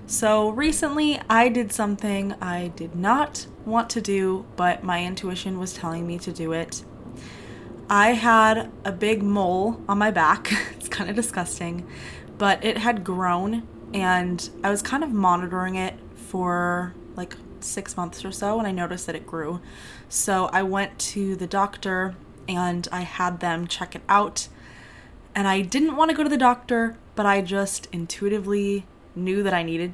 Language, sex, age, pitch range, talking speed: English, female, 20-39, 175-205 Hz, 170 wpm